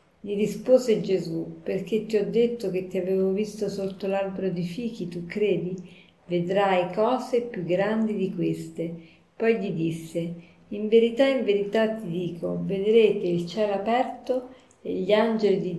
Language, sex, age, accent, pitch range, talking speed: Italian, female, 40-59, native, 175-225 Hz, 150 wpm